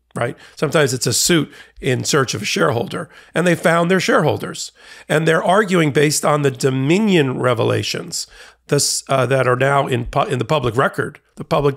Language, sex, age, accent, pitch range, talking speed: English, male, 40-59, American, 130-155 Hz, 175 wpm